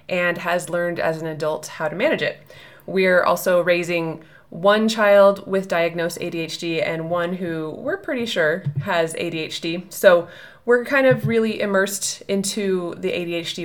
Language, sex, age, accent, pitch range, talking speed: English, female, 20-39, American, 170-200 Hz, 155 wpm